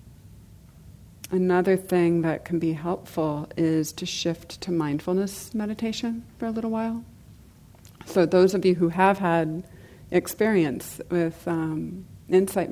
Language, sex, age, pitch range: English, female, 40-59, 155-185 Hz